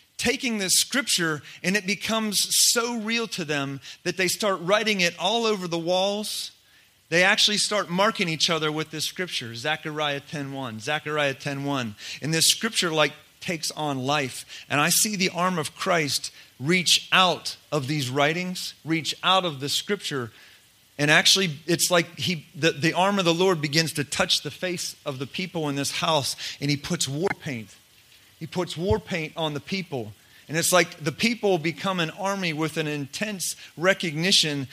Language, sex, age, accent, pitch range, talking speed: English, male, 40-59, American, 150-185 Hz, 175 wpm